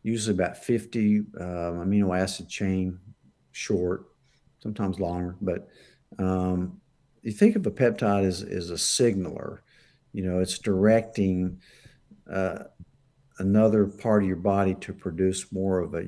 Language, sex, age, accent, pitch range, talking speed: English, male, 50-69, American, 90-110 Hz, 135 wpm